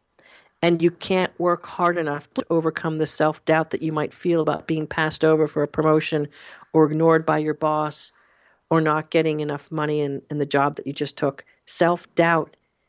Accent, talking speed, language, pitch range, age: American, 185 wpm, English, 145-180 Hz, 50-69